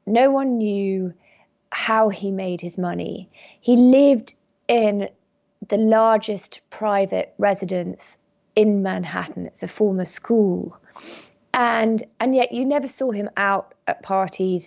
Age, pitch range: 20-39, 195-245 Hz